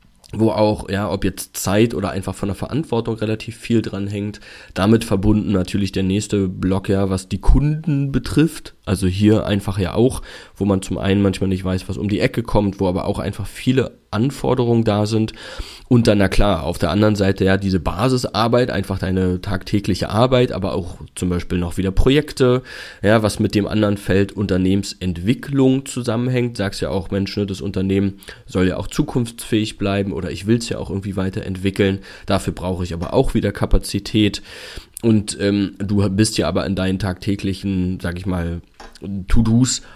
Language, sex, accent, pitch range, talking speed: German, male, German, 95-110 Hz, 180 wpm